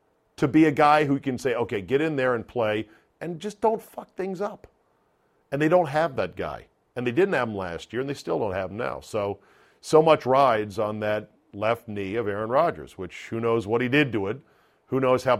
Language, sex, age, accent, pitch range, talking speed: English, male, 50-69, American, 105-135 Hz, 240 wpm